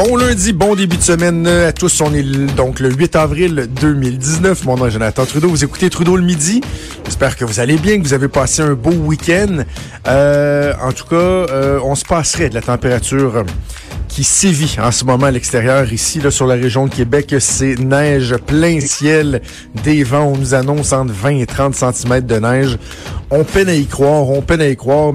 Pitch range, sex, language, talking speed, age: 120-150 Hz, male, French, 210 wpm, 50-69